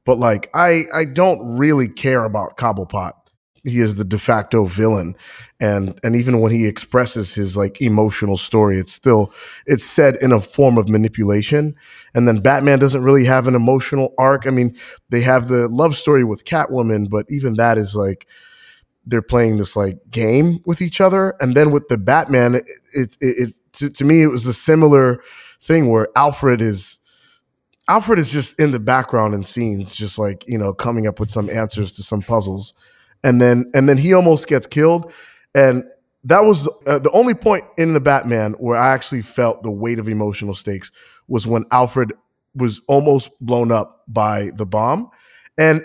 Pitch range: 110-145 Hz